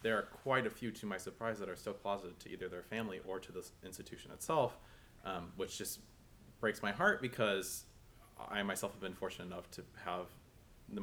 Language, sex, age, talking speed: English, male, 20-39, 200 wpm